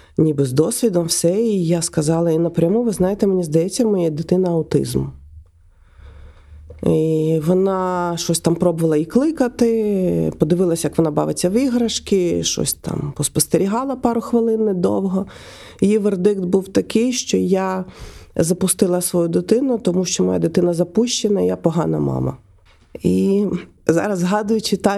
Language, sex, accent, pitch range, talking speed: Ukrainian, female, native, 160-215 Hz, 135 wpm